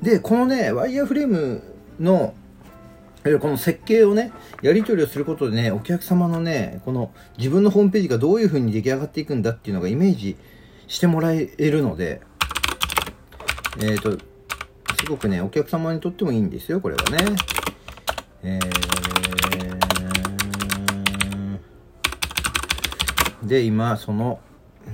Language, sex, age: Japanese, male, 40-59